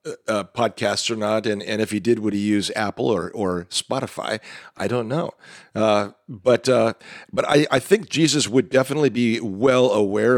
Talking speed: 185 wpm